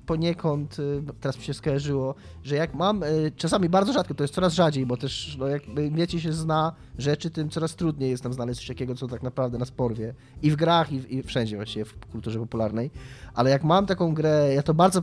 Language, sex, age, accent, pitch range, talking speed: Polish, male, 20-39, native, 135-185 Hz, 220 wpm